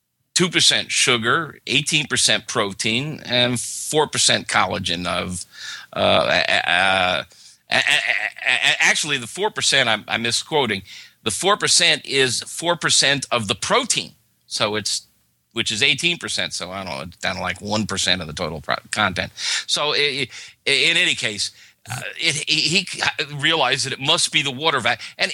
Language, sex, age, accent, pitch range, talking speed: English, male, 50-69, American, 125-175 Hz, 175 wpm